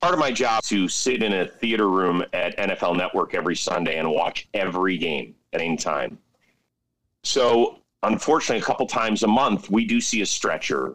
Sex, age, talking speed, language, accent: male, 40-59, 190 wpm, English, American